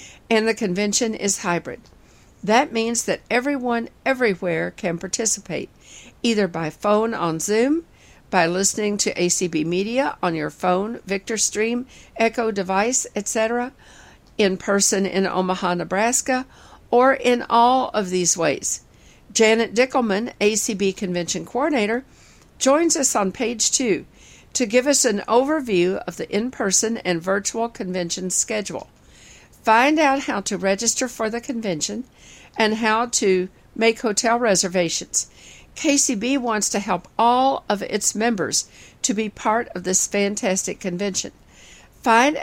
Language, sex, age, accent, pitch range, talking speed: English, female, 50-69, American, 190-240 Hz, 130 wpm